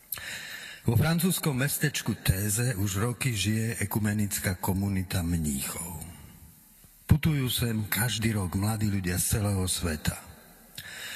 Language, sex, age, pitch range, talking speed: Slovak, male, 50-69, 95-130 Hz, 100 wpm